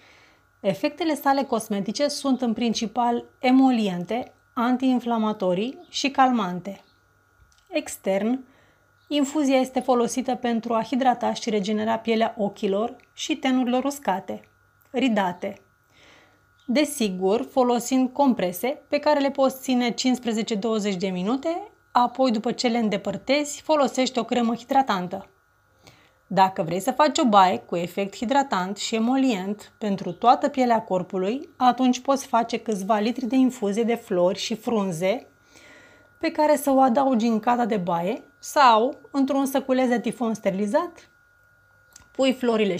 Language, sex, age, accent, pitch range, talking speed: Romanian, female, 30-49, native, 210-270 Hz, 125 wpm